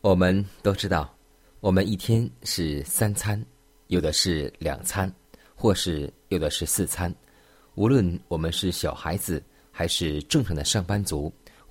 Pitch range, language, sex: 80-105 Hz, Chinese, male